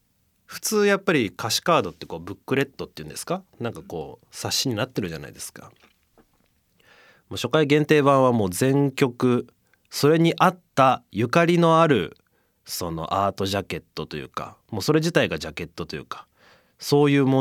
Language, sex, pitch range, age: Japanese, male, 100-150 Hz, 30-49